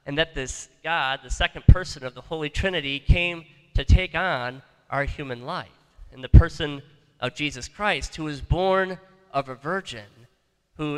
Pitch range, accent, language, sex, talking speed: 125-160 Hz, American, English, male, 170 wpm